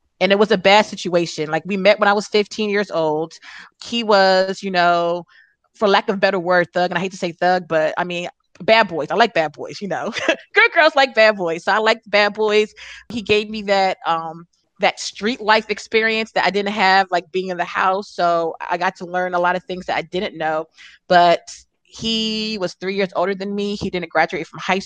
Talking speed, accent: 235 wpm, American